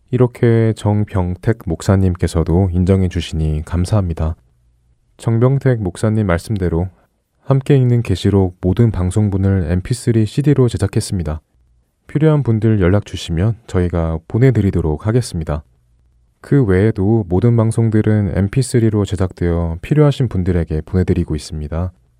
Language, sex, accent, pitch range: Korean, male, native, 85-115 Hz